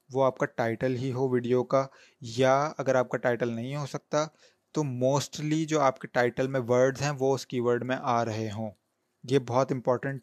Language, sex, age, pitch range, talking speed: Urdu, male, 20-39, 125-145 Hz, 190 wpm